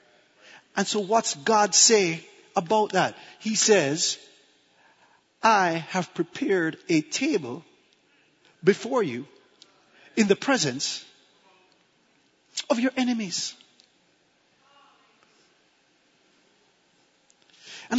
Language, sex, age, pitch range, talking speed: English, male, 40-59, 200-260 Hz, 75 wpm